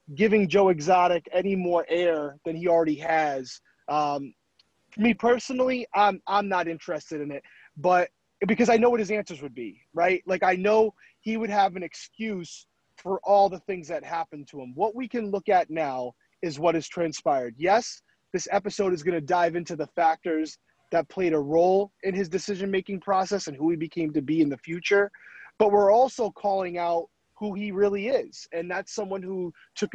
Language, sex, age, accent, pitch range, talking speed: English, male, 30-49, American, 165-200 Hz, 195 wpm